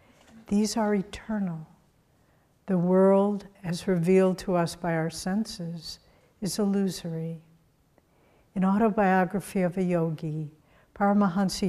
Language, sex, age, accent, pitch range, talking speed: English, female, 60-79, American, 165-200 Hz, 105 wpm